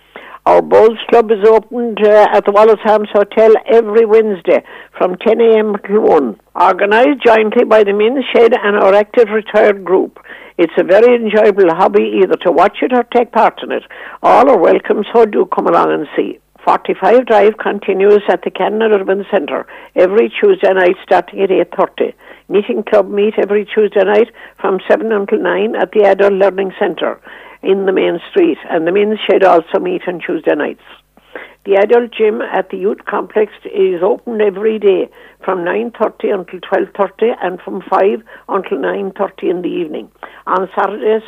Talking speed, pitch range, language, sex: 175 wpm, 195-240 Hz, English, female